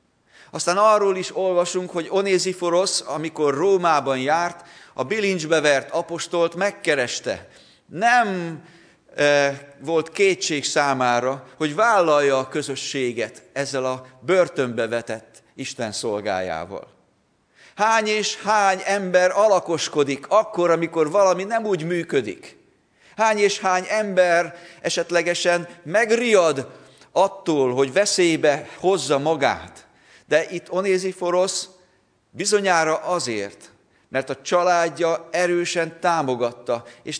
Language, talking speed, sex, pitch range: Hungarian, 100 wpm, male, 135-180 Hz